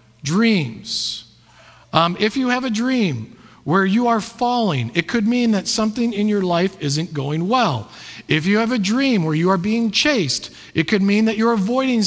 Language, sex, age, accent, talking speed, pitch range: English, male, 50-69, American, 190 wpm, 145-220 Hz